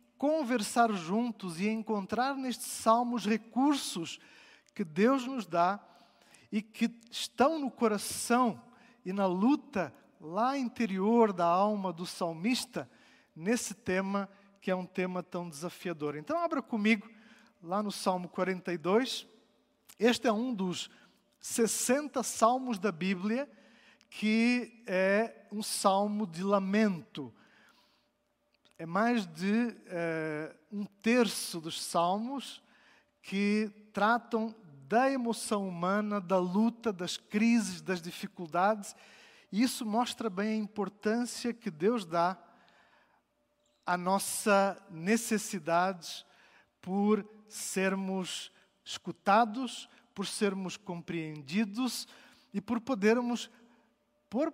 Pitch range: 185-235 Hz